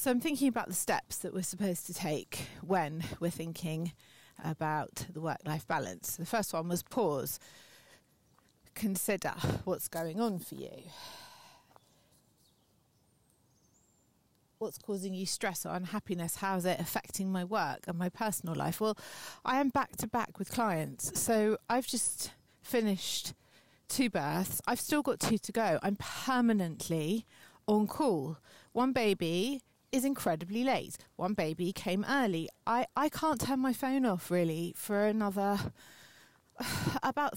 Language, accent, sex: English, British, female